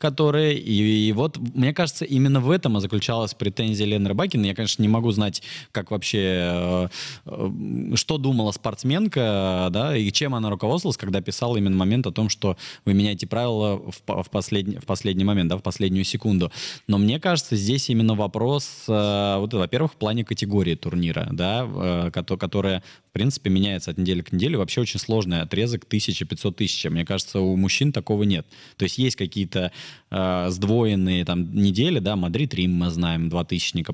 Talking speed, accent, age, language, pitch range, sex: 175 wpm, native, 20-39, Russian, 95-120 Hz, male